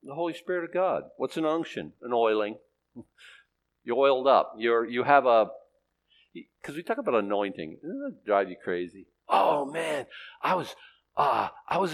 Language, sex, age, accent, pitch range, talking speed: English, male, 50-69, American, 100-150 Hz, 175 wpm